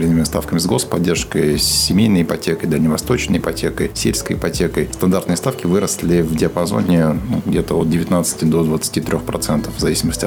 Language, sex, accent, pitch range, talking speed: Russian, male, native, 80-85 Hz, 140 wpm